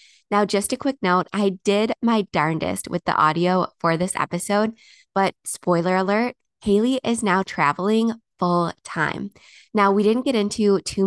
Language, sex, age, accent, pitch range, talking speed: English, female, 20-39, American, 175-210 Hz, 165 wpm